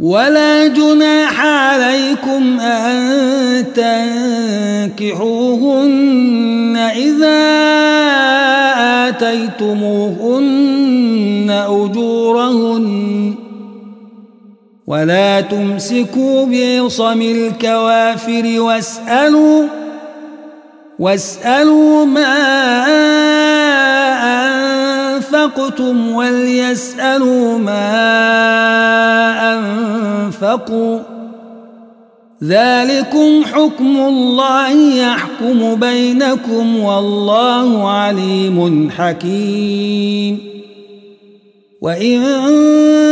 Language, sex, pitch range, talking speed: Arabic, male, 205-270 Hz, 40 wpm